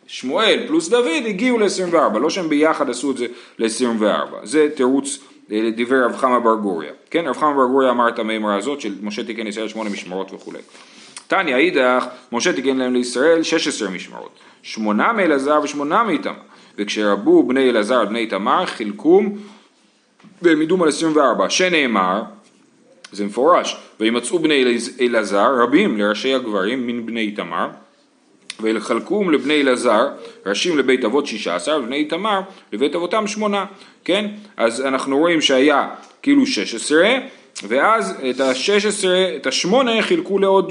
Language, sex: Hebrew, male